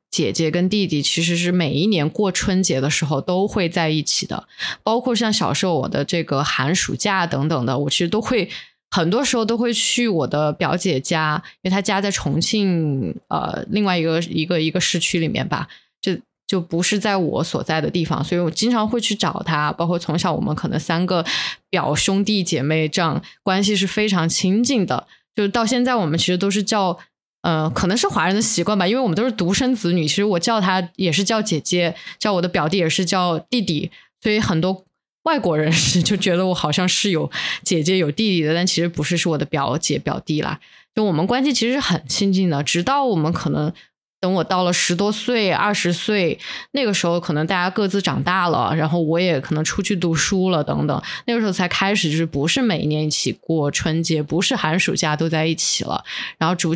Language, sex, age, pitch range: Chinese, female, 20-39, 160-205 Hz